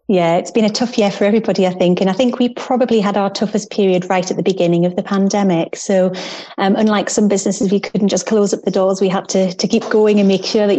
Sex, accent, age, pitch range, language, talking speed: female, British, 30-49, 185-210 Hz, English, 265 wpm